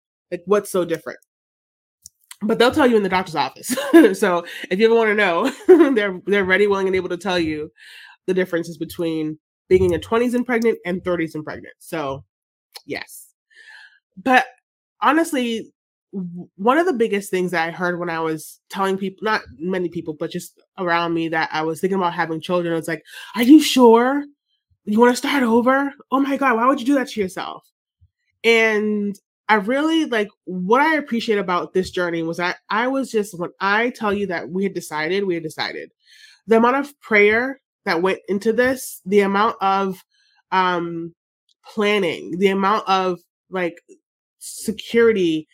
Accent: American